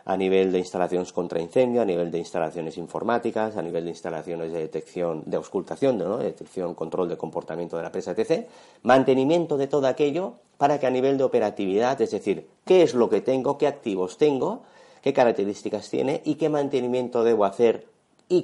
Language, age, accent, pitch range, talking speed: Spanish, 40-59, Spanish, 95-130 Hz, 185 wpm